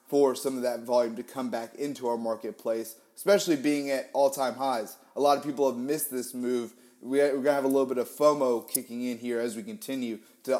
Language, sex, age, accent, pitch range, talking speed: English, male, 30-49, American, 125-155 Hz, 225 wpm